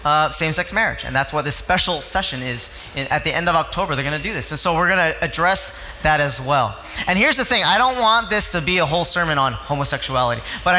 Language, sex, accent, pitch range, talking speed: English, male, American, 140-200 Hz, 250 wpm